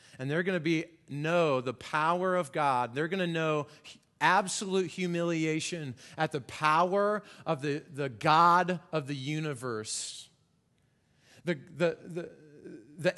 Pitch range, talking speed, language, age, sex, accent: 145-190 Hz, 135 wpm, English, 30-49, male, American